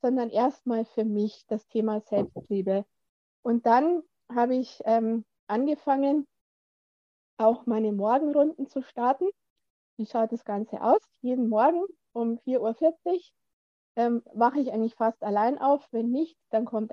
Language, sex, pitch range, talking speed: German, female, 225-280 Hz, 140 wpm